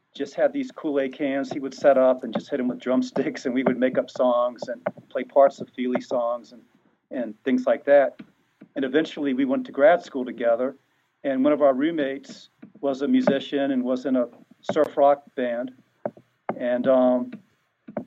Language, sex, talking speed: English, male, 190 wpm